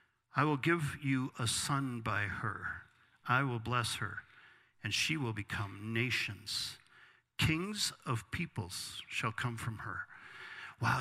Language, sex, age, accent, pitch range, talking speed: English, male, 50-69, American, 120-160 Hz, 135 wpm